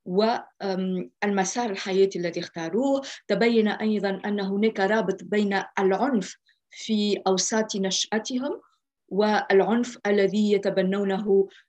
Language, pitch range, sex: Arabic, 190-215 Hz, female